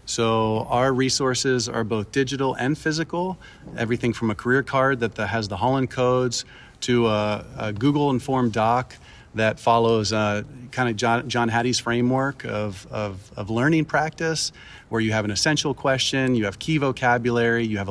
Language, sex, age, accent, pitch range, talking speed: English, male, 40-59, American, 115-140 Hz, 170 wpm